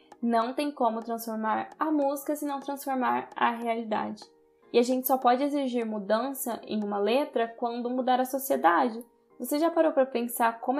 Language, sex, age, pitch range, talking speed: Portuguese, female, 10-29, 215-255 Hz, 170 wpm